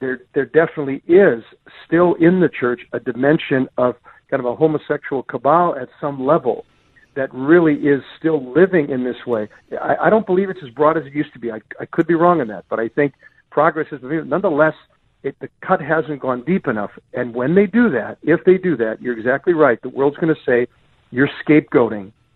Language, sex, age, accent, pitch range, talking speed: English, male, 50-69, American, 130-160 Hz, 210 wpm